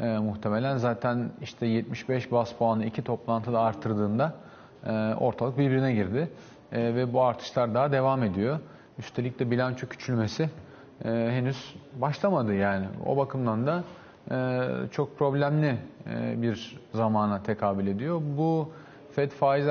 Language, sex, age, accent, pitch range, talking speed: Turkish, male, 40-59, native, 115-140 Hz, 130 wpm